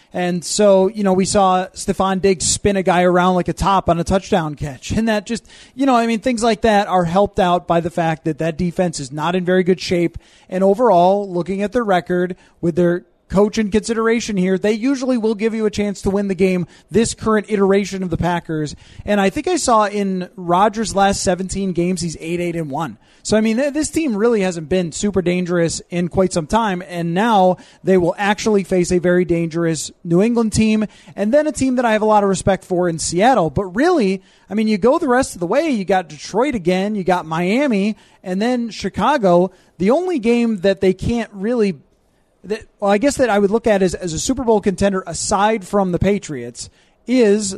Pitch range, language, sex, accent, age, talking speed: 180-220 Hz, English, male, American, 20-39, 220 wpm